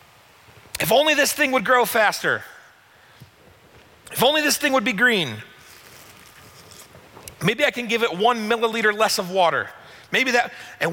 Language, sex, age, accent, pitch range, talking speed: English, male, 40-59, American, 145-230 Hz, 150 wpm